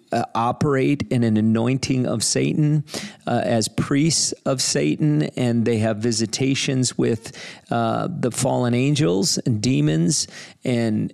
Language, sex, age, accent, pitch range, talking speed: English, male, 40-59, American, 110-130 Hz, 130 wpm